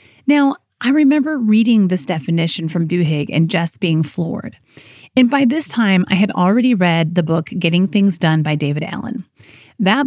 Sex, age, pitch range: female, 30-49, 165-220 Hz